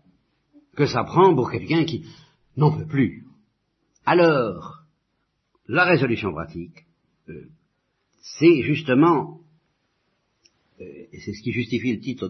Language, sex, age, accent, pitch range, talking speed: French, male, 50-69, French, 115-155 Hz, 115 wpm